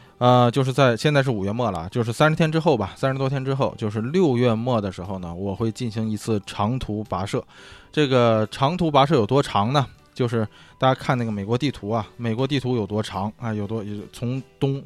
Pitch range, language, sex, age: 105-125 Hz, Chinese, male, 20-39